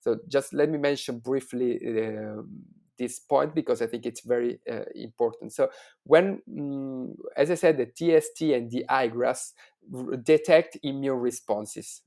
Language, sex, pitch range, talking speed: English, male, 125-155 Hz, 150 wpm